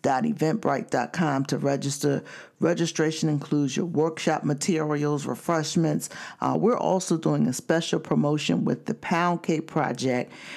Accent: American